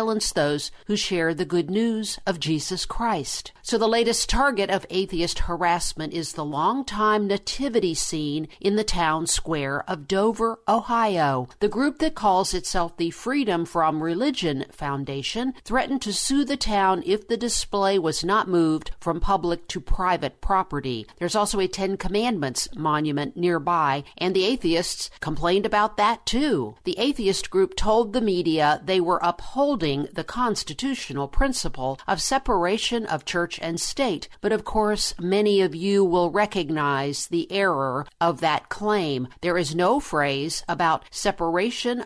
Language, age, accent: English, 50-69, American